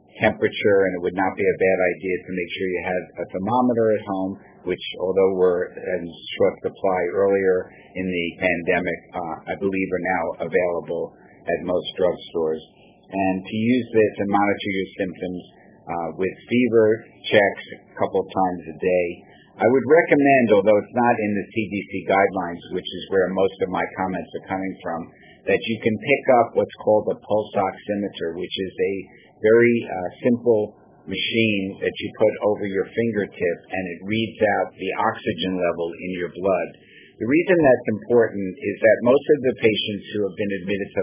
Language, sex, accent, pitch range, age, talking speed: English, male, American, 90-110 Hz, 50-69, 180 wpm